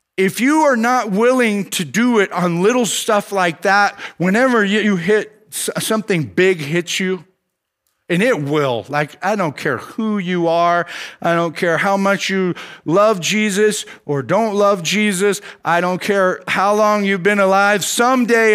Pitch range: 160-220 Hz